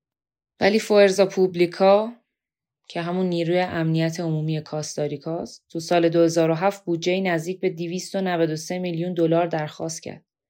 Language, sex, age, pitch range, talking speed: Persian, female, 20-39, 155-180 Hz, 115 wpm